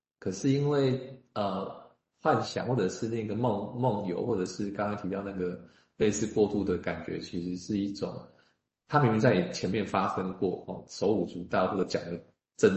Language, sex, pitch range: Chinese, male, 90-105 Hz